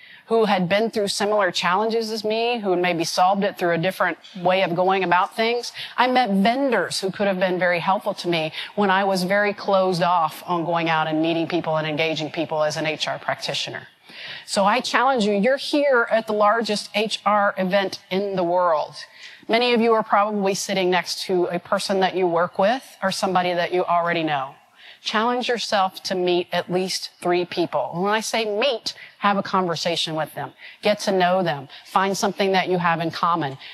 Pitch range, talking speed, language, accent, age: 170-205 Hz, 200 wpm, English, American, 40-59